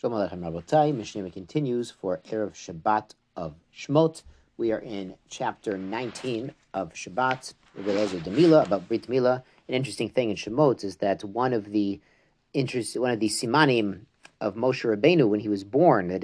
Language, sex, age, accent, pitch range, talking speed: English, male, 50-69, American, 100-135 Hz, 150 wpm